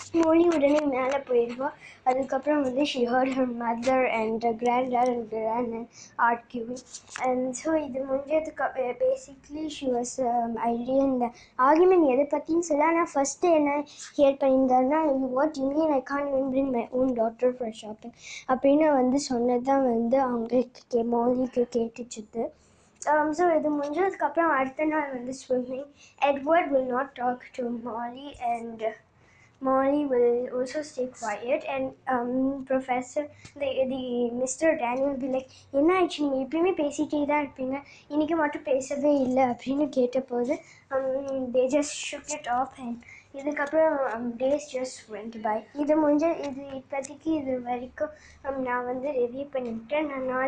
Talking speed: 155 wpm